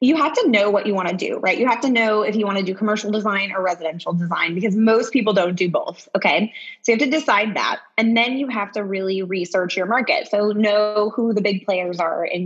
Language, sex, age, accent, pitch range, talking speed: English, female, 20-39, American, 185-225 Hz, 260 wpm